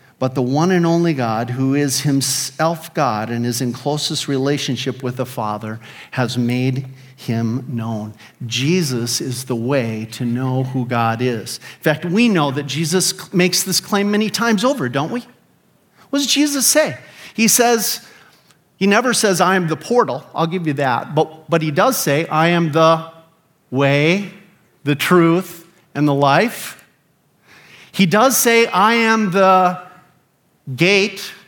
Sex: male